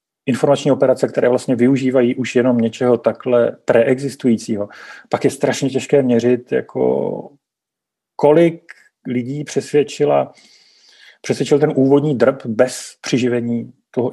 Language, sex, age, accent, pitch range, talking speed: Czech, male, 40-59, native, 115-135 Hz, 110 wpm